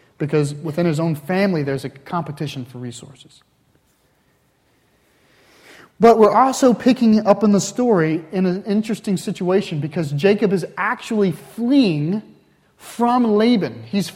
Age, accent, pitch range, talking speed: 30-49, American, 145-215 Hz, 125 wpm